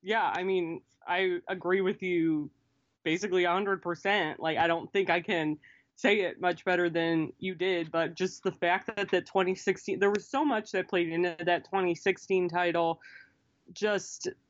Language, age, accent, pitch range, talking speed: English, 20-39, American, 175-200 Hz, 165 wpm